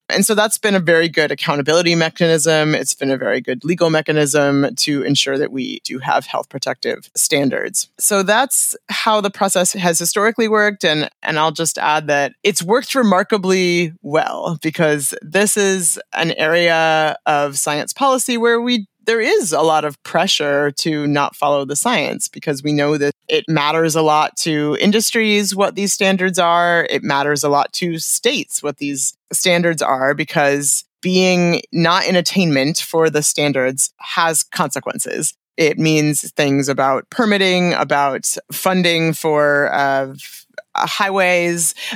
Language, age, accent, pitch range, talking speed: English, 30-49, American, 145-190 Hz, 155 wpm